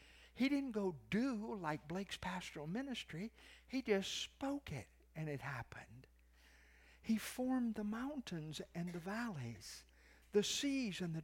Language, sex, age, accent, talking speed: English, male, 60-79, American, 140 wpm